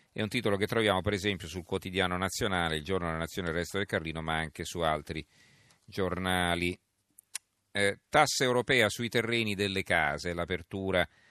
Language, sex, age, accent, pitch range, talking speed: Italian, male, 40-59, native, 90-115 Hz, 165 wpm